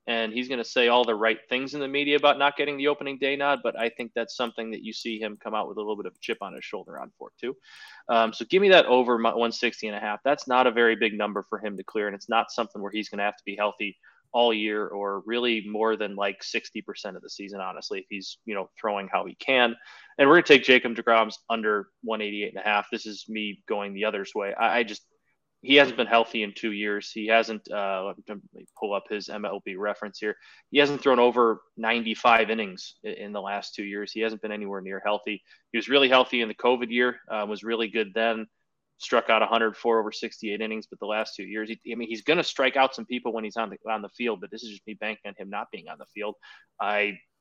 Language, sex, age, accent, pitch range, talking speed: English, male, 20-39, American, 105-120 Hz, 265 wpm